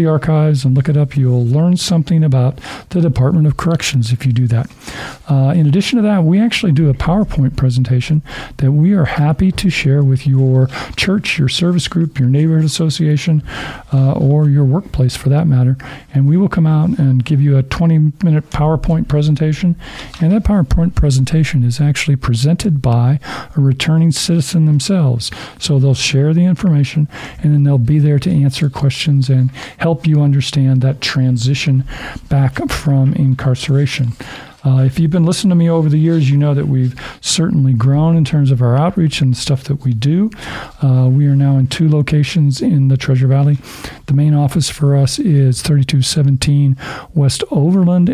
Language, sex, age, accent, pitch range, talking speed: English, male, 50-69, American, 135-160 Hz, 175 wpm